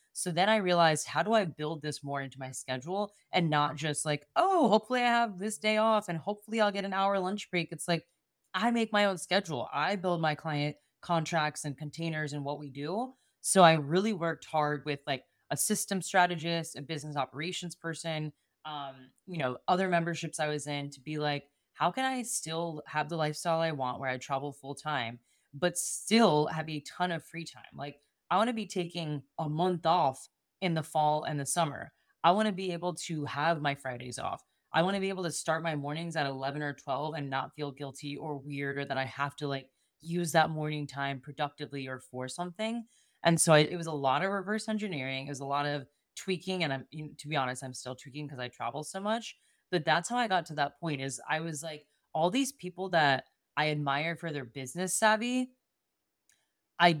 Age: 10-29